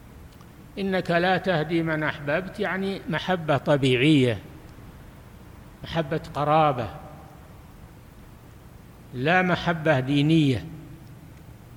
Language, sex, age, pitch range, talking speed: Arabic, male, 60-79, 135-160 Hz, 65 wpm